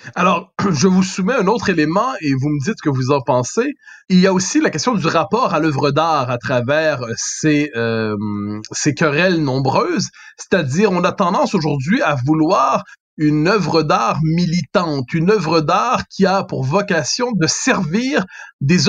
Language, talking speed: French, 175 wpm